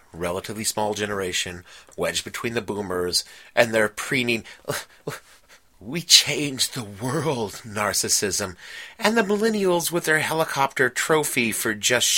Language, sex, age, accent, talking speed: English, male, 30-49, American, 120 wpm